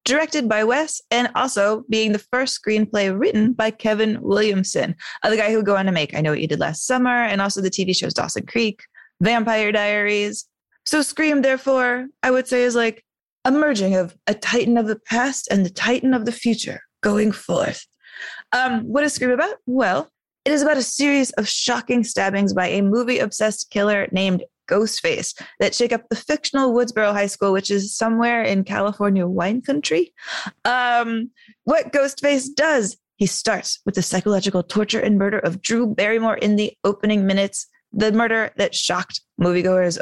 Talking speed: 180 wpm